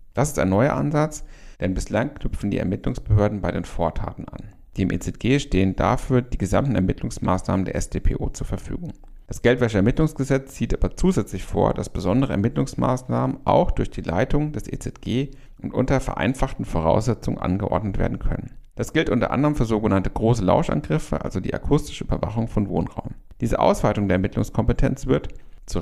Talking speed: 160 wpm